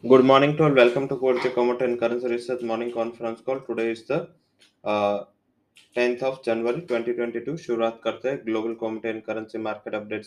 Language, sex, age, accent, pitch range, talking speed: English, male, 20-39, Indian, 105-115 Hz, 165 wpm